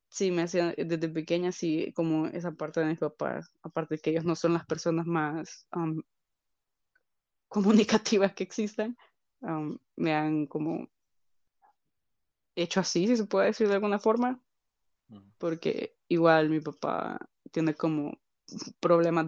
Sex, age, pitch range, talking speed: female, 20-39, 160-190 Hz, 140 wpm